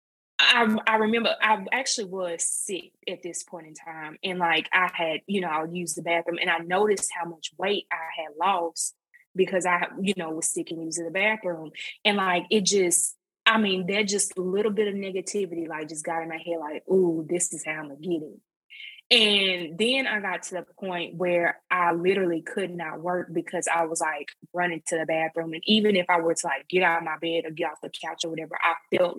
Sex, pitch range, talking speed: female, 170-210 Hz, 230 wpm